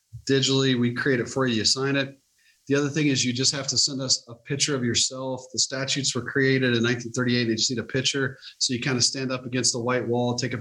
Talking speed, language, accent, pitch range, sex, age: 260 wpm, English, American, 120-135 Hz, male, 30-49